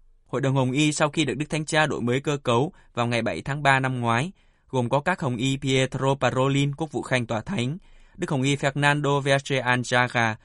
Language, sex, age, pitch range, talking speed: Vietnamese, male, 20-39, 120-140 Hz, 225 wpm